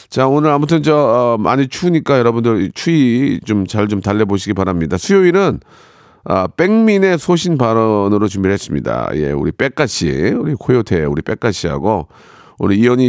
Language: Korean